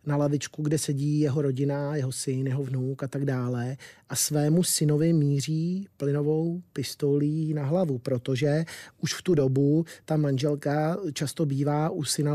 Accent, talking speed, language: native, 155 wpm, Czech